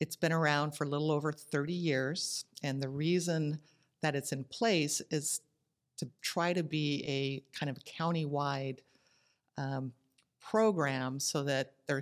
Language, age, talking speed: English, 50-69, 145 wpm